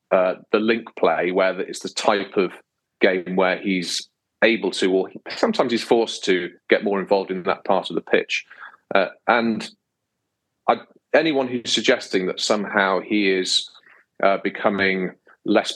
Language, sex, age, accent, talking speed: English, male, 40-59, British, 160 wpm